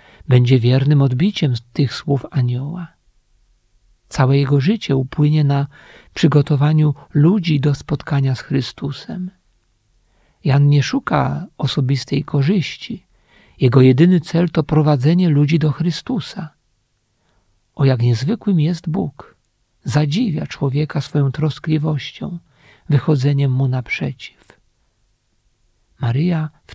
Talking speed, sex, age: 100 wpm, male, 50-69